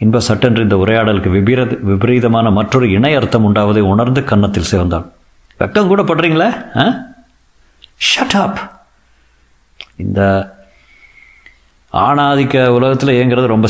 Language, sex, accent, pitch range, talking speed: Tamil, male, native, 100-130 Hz, 90 wpm